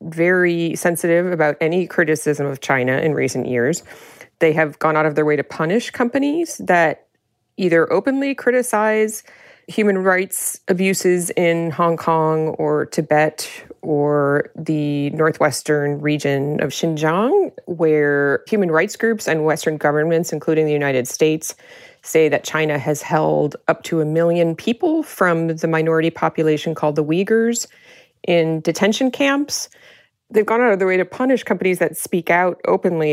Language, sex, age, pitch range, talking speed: English, female, 30-49, 155-195 Hz, 150 wpm